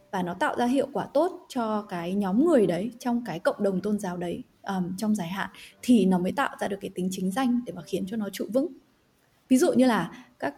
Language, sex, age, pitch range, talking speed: Vietnamese, female, 20-39, 195-255 Hz, 255 wpm